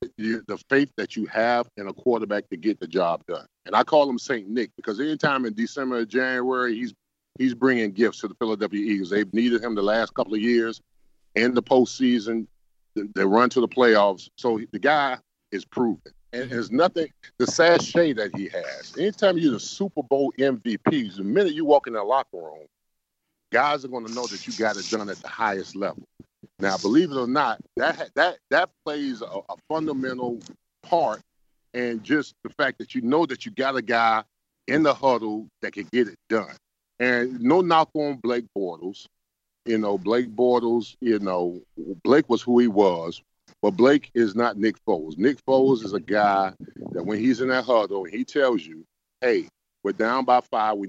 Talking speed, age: 195 wpm, 40-59